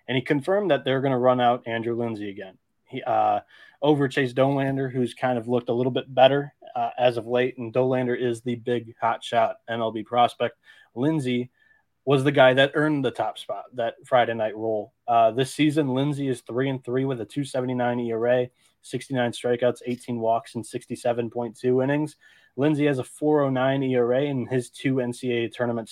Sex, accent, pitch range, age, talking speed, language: male, American, 115-135 Hz, 20-39, 190 wpm, English